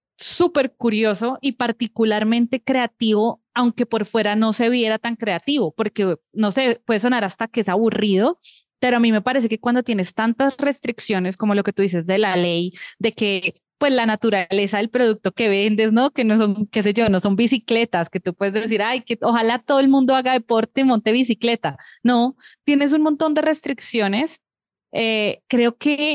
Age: 20-39